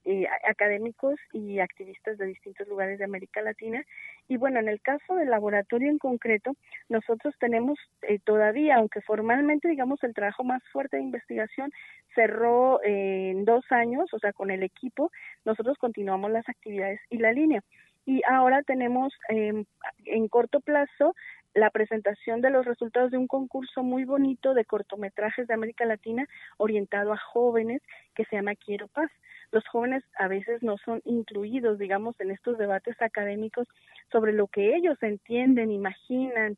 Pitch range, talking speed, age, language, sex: 210-255 Hz, 160 wpm, 30-49, Spanish, female